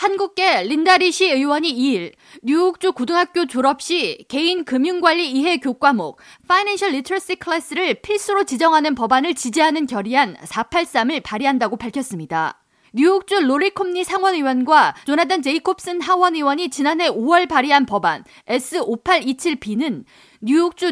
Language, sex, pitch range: Korean, female, 260-350 Hz